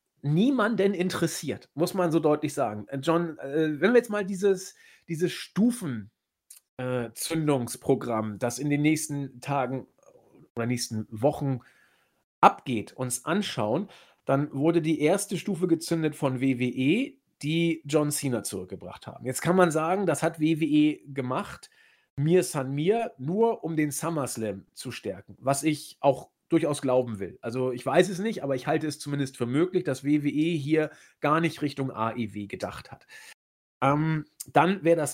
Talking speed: 150 wpm